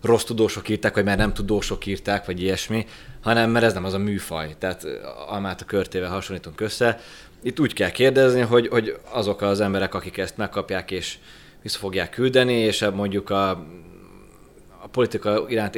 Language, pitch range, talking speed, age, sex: Hungarian, 95-110 Hz, 170 wpm, 20-39, male